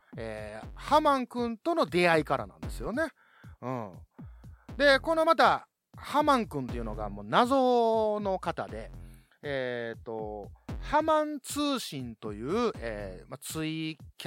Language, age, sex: Japanese, 30-49, male